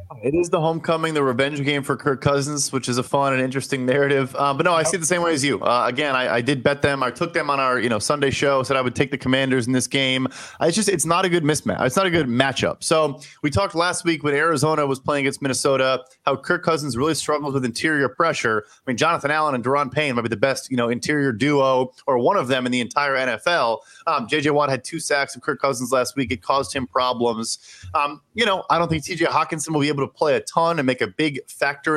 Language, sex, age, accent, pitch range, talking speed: English, male, 30-49, American, 130-155 Hz, 265 wpm